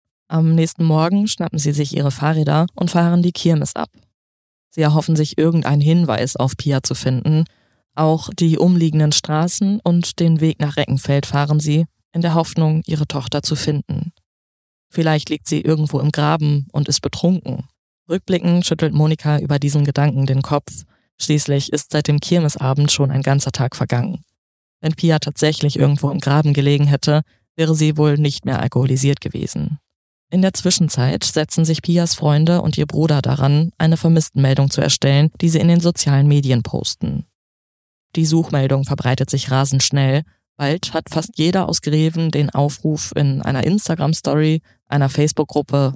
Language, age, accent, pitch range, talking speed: German, 20-39, German, 140-160 Hz, 160 wpm